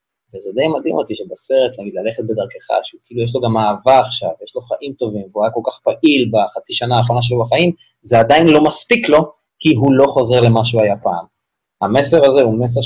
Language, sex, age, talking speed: Hebrew, male, 20-39, 215 wpm